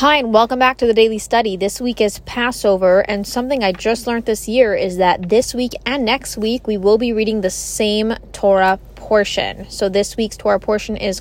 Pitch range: 195-240 Hz